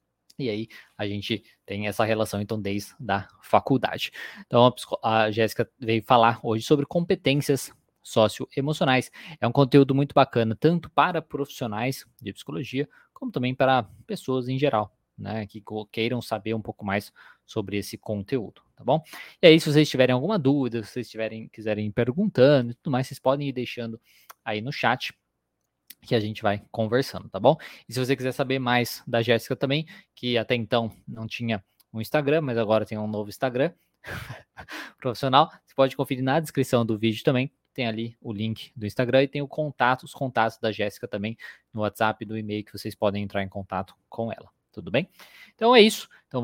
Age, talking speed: 20-39, 180 wpm